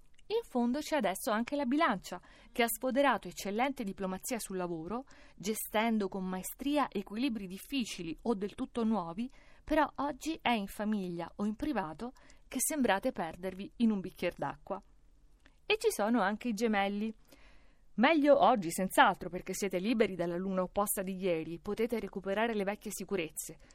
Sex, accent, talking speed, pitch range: female, native, 150 wpm, 185-255 Hz